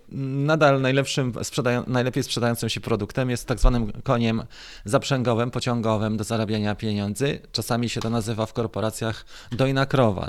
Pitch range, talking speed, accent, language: 110-135 Hz, 135 wpm, native, Polish